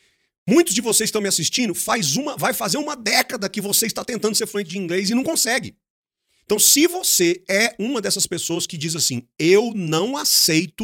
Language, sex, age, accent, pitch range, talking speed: English, male, 40-59, Brazilian, 140-225 Hz, 205 wpm